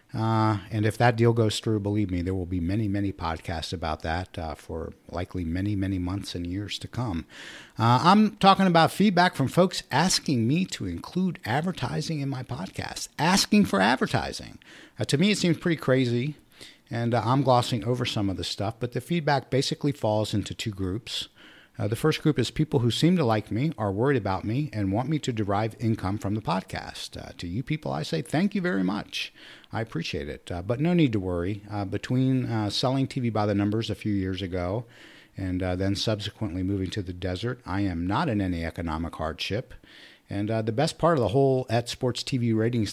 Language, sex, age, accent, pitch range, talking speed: English, male, 50-69, American, 100-140 Hz, 210 wpm